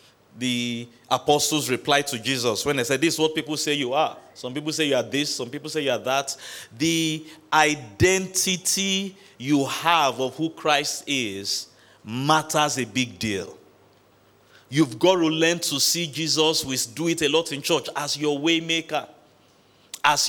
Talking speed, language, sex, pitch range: 170 wpm, English, male, 135-175 Hz